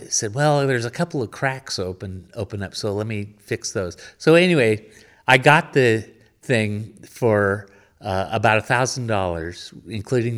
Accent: American